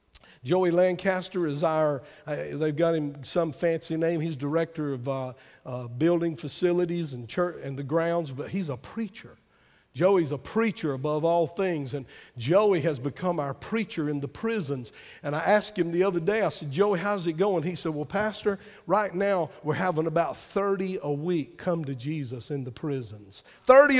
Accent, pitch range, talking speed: American, 160-230 Hz, 185 wpm